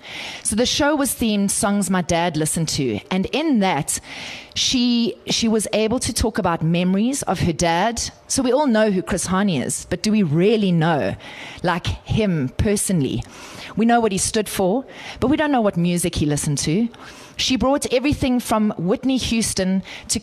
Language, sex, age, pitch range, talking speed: English, female, 30-49, 175-225 Hz, 185 wpm